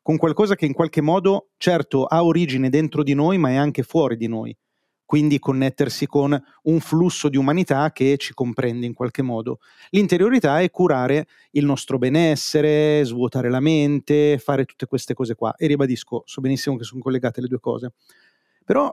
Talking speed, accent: 180 wpm, native